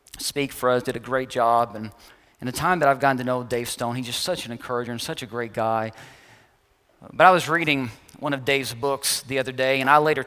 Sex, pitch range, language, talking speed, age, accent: male, 130-170 Hz, English, 245 wpm, 40-59, American